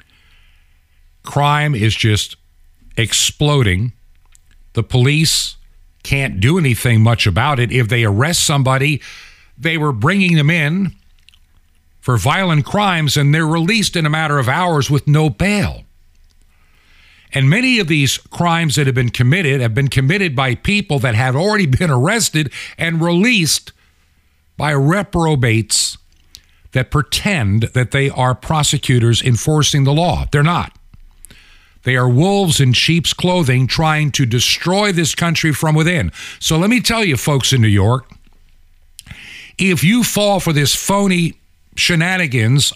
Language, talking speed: English, 140 wpm